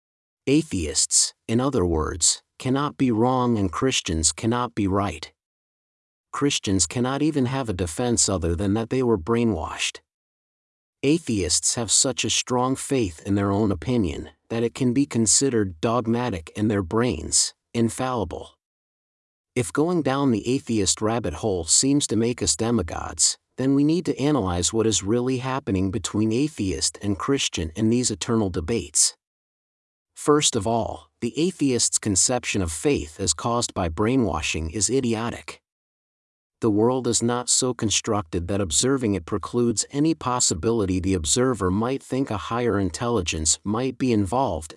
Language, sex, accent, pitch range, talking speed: English, male, American, 95-125 Hz, 145 wpm